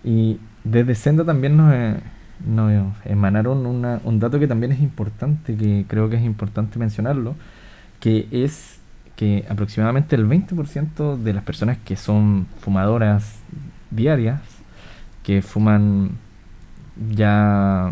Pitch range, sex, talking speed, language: 105-140 Hz, male, 115 wpm, Spanish